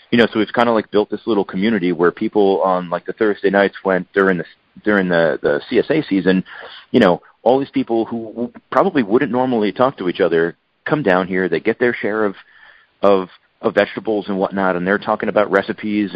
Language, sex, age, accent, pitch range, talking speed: English, male, 40-59, American, 90-110 Hz, 210 wpm